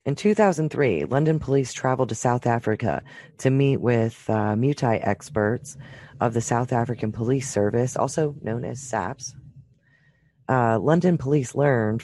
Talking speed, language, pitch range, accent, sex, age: 140 wpm, English, 110-140 Hz, American, female, 30-49